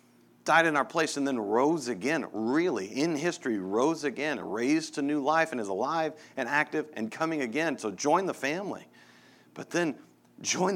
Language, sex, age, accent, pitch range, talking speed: English, male, 40-59, American, 95-155 Hz, 180 wpm